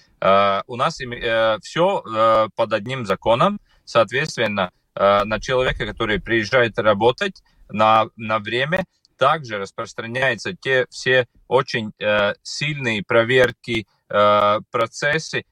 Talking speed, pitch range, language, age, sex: 85 wpm, 105-130 Hz, Russian, 30-49, male